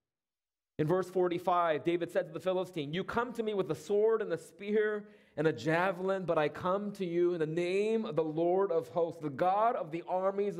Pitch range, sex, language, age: 165-220 Hz, male, English, 30-49